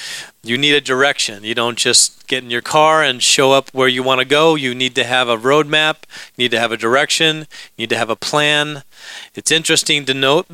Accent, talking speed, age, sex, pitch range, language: American, 240 wpm, 40-59, male, 125-155 Hz, English